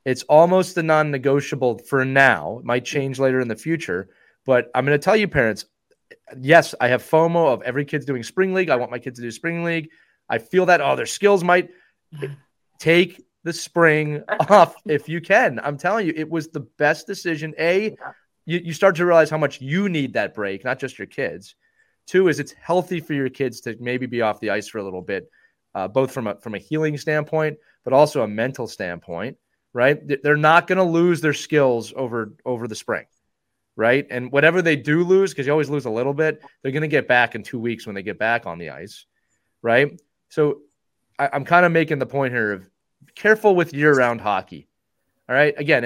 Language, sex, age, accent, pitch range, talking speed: English, male, 30-49, American, 125-165 Hz, 215 wpm